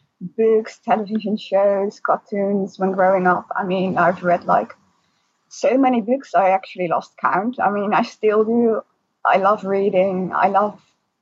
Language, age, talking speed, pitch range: English, 20-39, 155 wpm, 195-240 Hz